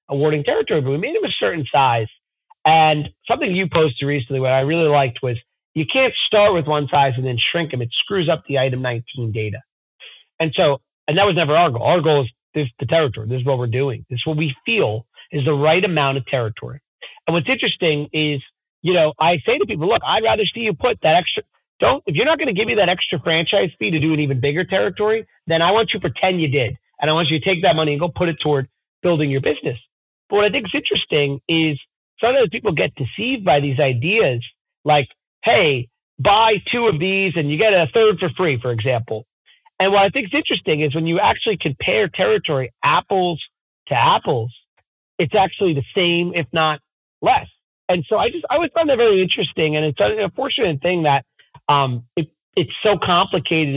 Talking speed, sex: 220 wpm, male